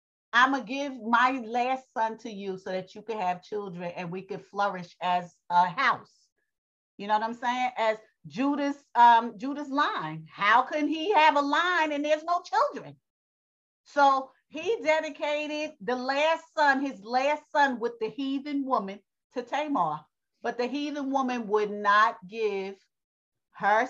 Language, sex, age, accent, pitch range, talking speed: English, female, 40-59, American, 215-300 Hz, 160 wpm